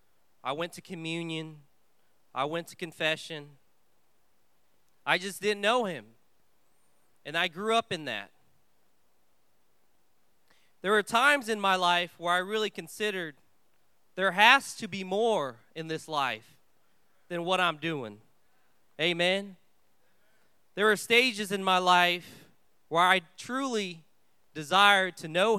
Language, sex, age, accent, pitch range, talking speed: English, male, 20-39, American, 160-210 Hz, 125 wpm